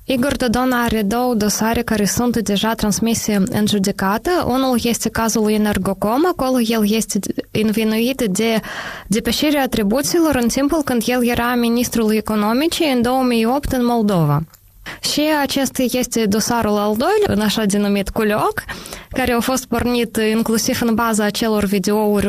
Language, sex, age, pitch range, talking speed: Romanian, female, 20-39, 205-250 Hz, 140 wpm